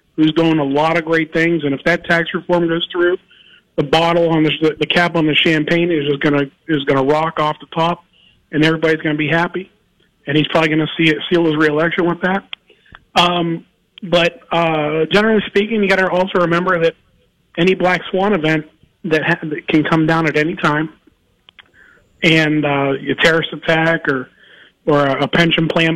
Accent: American